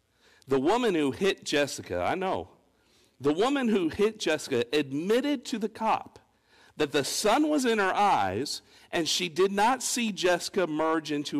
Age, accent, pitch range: 50-69, American, 130-220 Hz